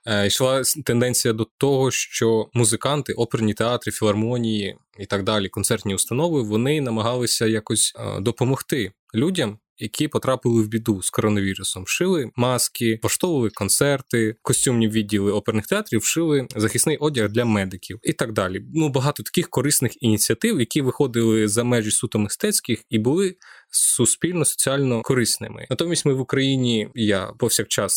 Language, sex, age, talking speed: Ukrainian, male, 20-39, 135 wpm